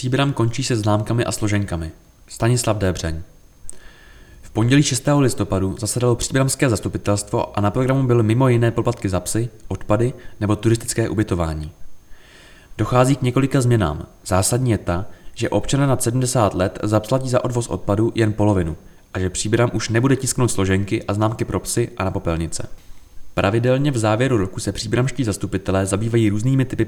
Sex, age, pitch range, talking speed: male, 20-39, 95-125 Hz, 155 wpm